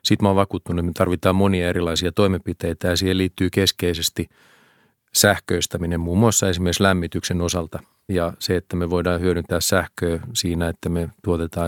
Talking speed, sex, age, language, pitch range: 160 wpm, male, 40-59, Finnish, 85-95 Hz